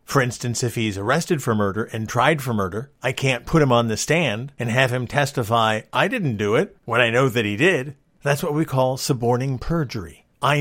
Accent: American